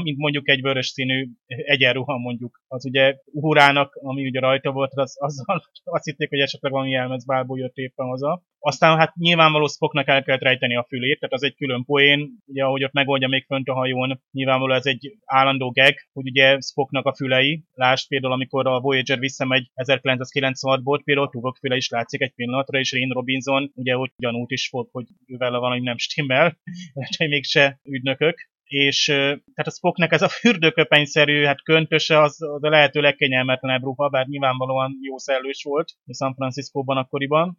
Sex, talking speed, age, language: male, 175 wpm, 30-49, Hungarian